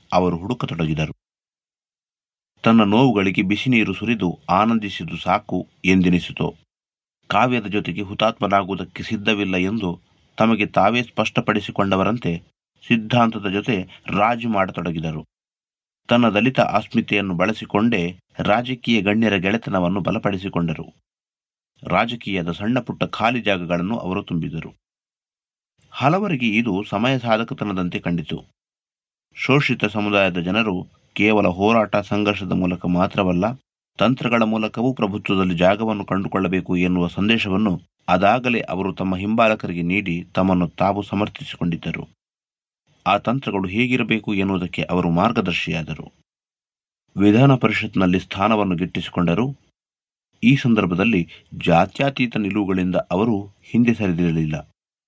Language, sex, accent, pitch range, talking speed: Kannada, male, native, 90-115 Hz, 85 wpm